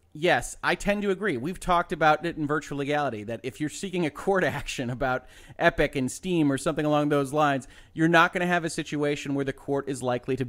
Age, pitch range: 30-49, 125-160 Hz